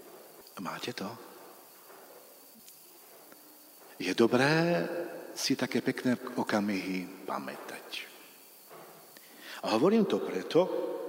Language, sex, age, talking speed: Slovak, male, 50-69, 70 wpm